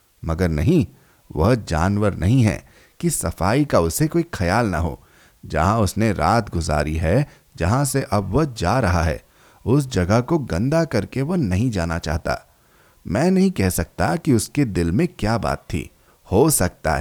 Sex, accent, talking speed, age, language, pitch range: male, native, 170 wpm, 30-49, Hindi, 85-140 Hz